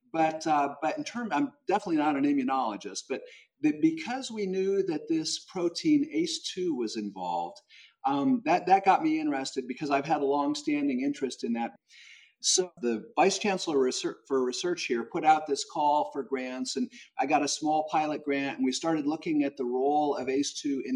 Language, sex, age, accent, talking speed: English, male, 50-69, American, 185 wpm